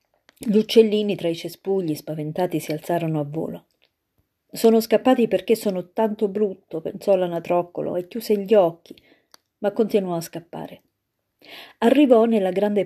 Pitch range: 165-225 Hz